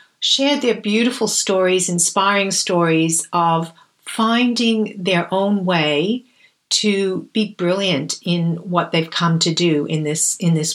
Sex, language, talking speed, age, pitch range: female, English, 135 wpm, 50-69, 170-225 Hz